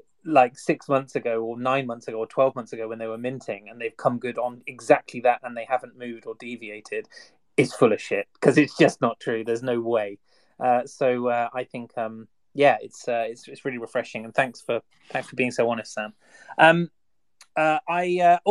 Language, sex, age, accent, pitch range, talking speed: English, male, 30-49, British, 125-170 Hz, 215 wpm